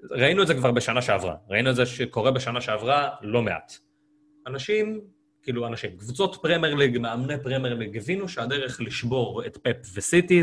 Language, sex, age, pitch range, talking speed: Hebrew, male, 30-49, 110-160 Hz, 165 wpm